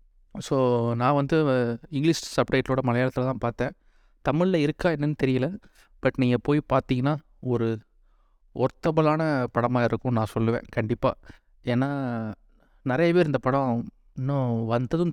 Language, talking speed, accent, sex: Tamil, 115 wpm, native, male